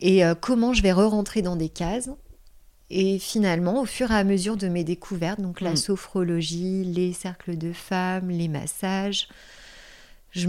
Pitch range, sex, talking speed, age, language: 175-210 Hz, female, 160 wpm, 30-49, French